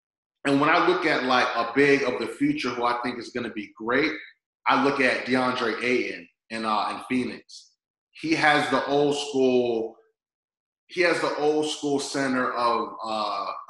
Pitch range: 130-185 Hz